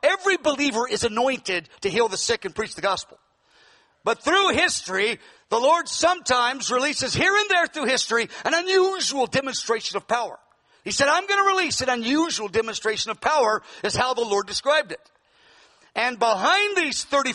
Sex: male